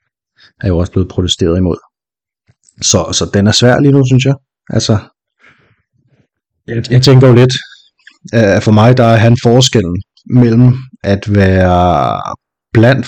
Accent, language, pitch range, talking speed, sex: native, Danish, 90-115 Hz, 140 wpm, male